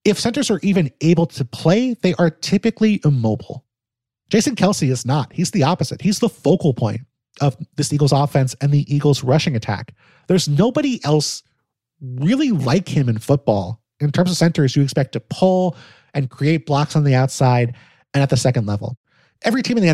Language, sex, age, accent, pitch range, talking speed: English, male, 30-49, American, 125-165 Hz, 185 wpm